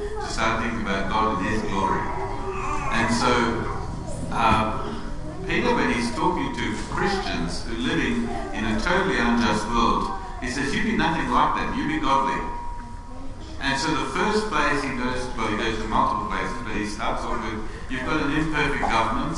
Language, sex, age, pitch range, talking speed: English, male, 60-79, 105-135 Hz, 180 wpm